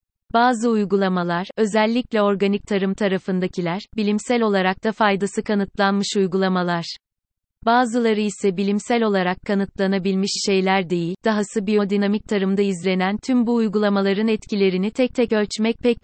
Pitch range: 190-220 Hz